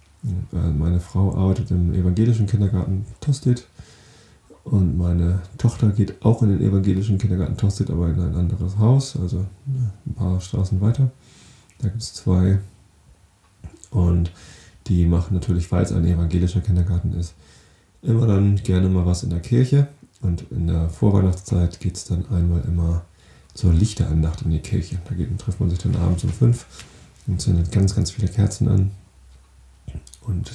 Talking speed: 160 wpm